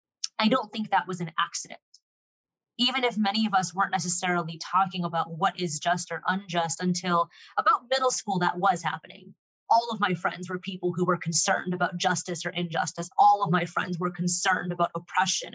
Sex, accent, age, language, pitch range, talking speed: female, American, 20-39, English, 175-215 Hz, 190 wpm